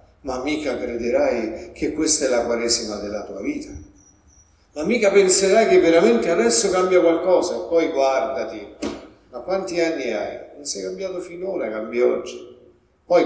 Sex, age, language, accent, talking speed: male, 60-79, Italian, native, 150 wpm